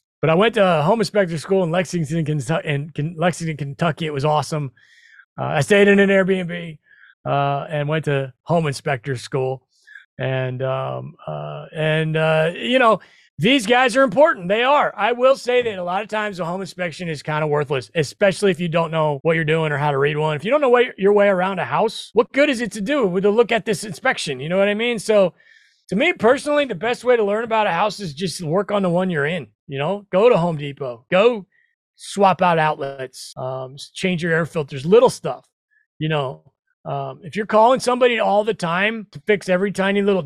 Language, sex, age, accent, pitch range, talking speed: English, male, 30-49, American, 155-220 Hz, 220 wpm